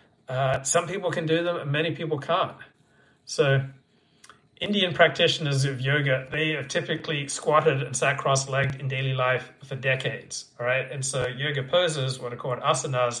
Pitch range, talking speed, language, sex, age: 130-155 Hz, 170 wpm, English, male, 60-79